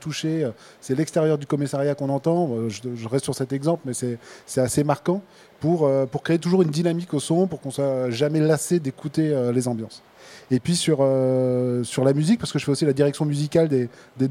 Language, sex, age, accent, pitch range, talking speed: French, male, 20-39, French, 130-160 Hz, 205 wpm